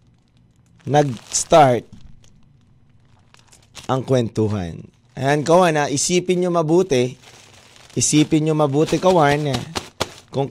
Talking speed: 80 wpm